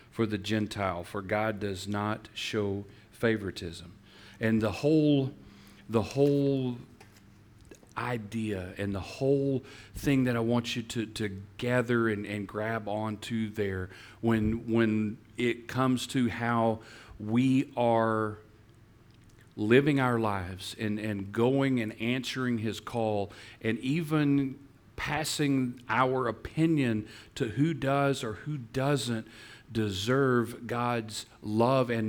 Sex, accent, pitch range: male, American, 110-130 Hz